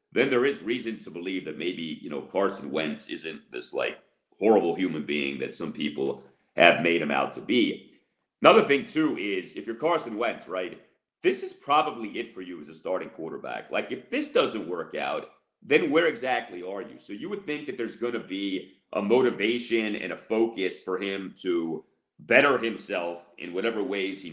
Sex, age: male, 40-59